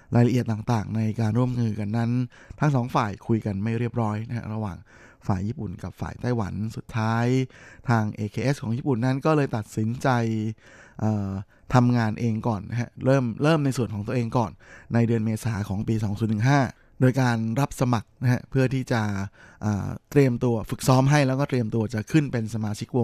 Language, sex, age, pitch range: Thai, male, 20-39, 110-130 Hz